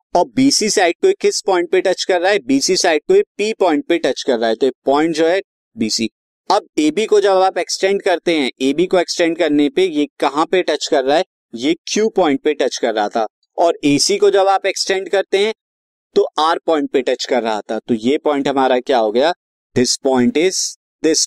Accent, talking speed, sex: native, 235 wpm, male